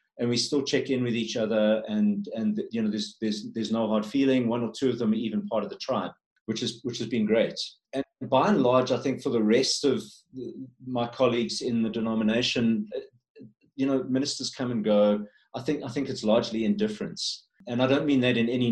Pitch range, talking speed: 110-145 Hz, 225 wpm